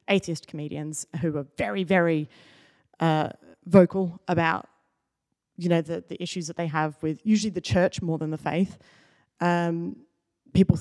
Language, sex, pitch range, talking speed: English, female, 155-185 Hz, 150 wpm